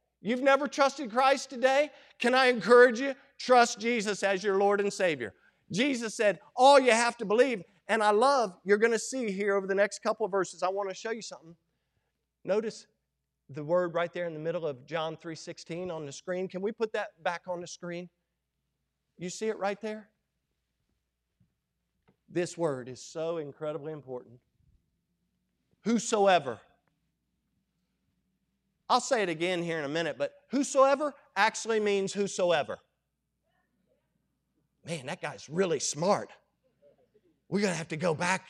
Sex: male